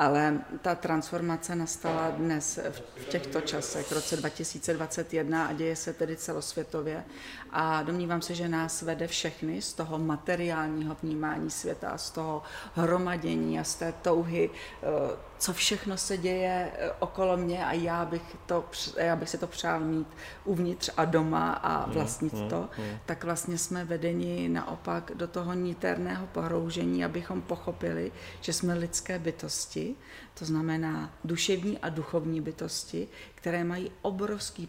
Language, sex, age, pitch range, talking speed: Czech, female, 40-59, 155-170 Hz, 135 wpm